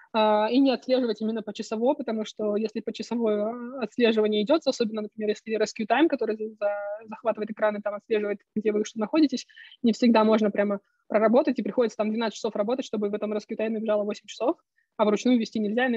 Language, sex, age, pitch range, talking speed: Russian, female, 20-39, 215-250 Hz, 205 wpm